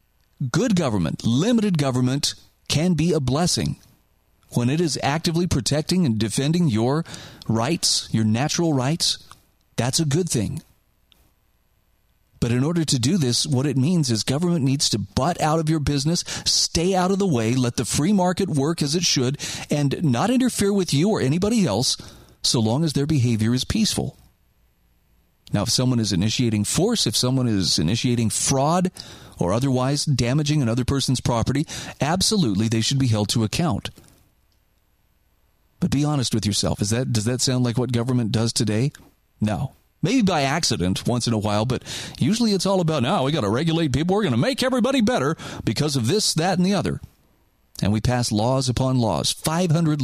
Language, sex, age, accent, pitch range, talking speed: English, male, 40-59, American, 115-160 Hz, 175 wpm